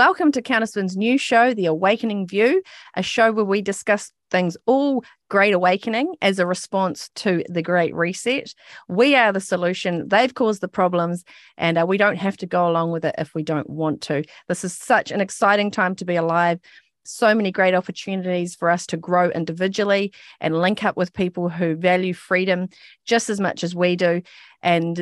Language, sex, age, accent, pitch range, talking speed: English, female, 30-49, Australian, 170-205 Hz, 190 wpm